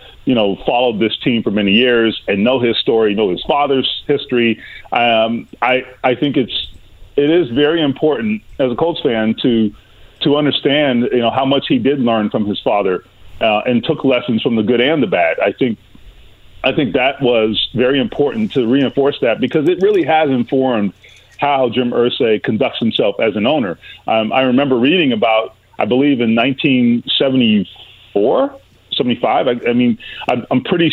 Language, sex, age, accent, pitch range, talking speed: English, male, 40-59, American, 110-145 Hz, 180 wpm